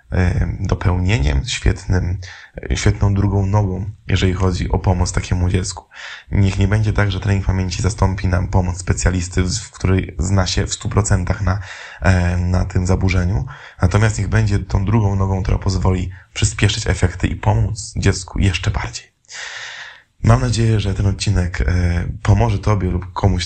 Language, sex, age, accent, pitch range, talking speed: Polish, male, 20-39, native, 90-105 Hz, 145 wpm